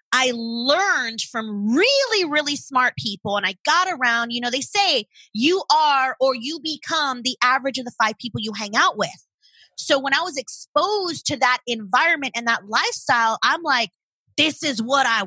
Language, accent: English, American